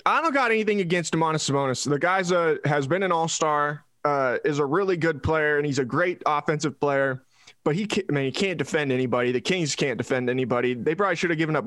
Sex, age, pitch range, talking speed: male, 20-39, 140-200 Hz, 210 wpm